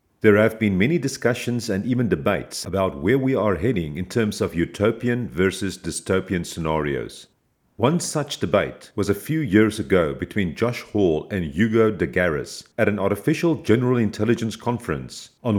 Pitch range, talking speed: 95-125 Hz, 160 wpm